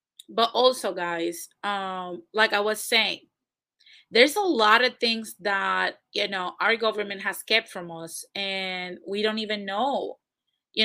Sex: female